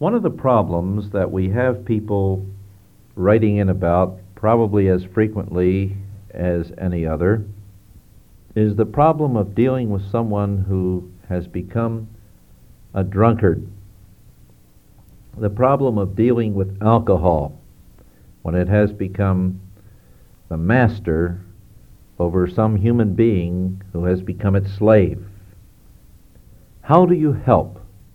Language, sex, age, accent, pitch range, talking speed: English, male, 60-79, American, 95-110 Hz, 115 wpm